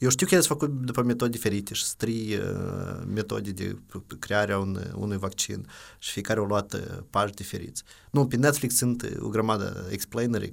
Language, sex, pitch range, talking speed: Romanian, male, 105-130 Hz, 180 wpm